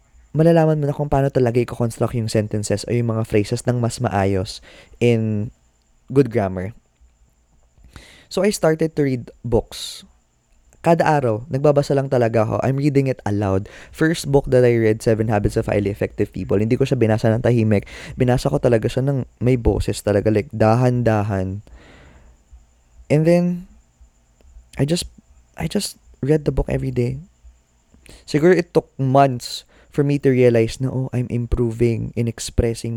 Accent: native